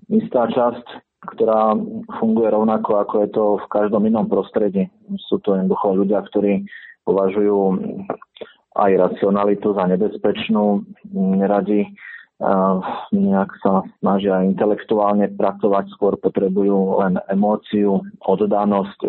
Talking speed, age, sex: 105 wpm, 30-49, male